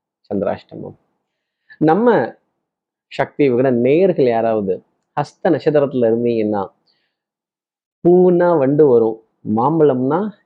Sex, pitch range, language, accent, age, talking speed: male, 120-180 Hz, Tamil, native, 30-49, 75 wpm